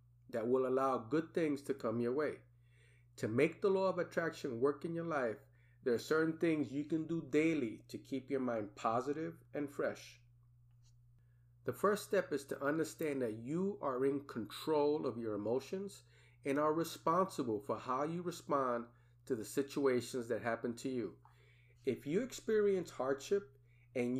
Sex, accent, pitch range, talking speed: male, American, 120-155 Hz, 165 wpm